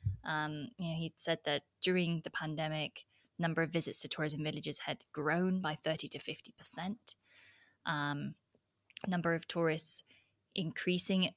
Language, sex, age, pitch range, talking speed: English, female, 20-39, 150-170 Hz, 135 wpm